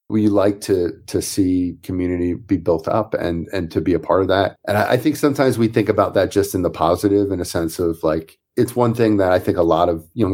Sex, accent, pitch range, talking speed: male, American, 85-105 Hz, 255 wpm